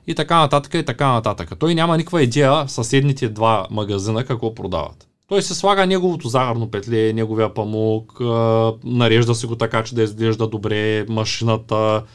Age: 20-39